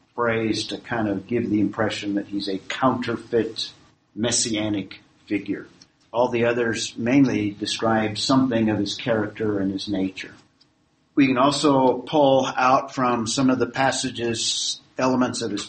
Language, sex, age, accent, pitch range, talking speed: English, male, 50-69, American, 110-135 Hz, 145 wpm